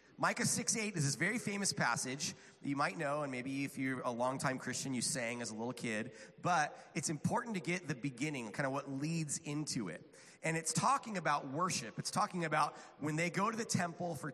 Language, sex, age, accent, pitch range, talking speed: English, male, 30-49, American, 140-190 Hz, 220 wpm